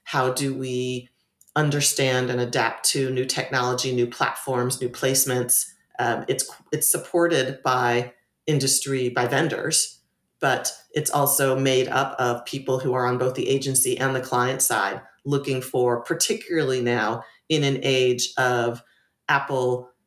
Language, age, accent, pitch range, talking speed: English, 40-59, American, 125-140 Hz, 140 wpm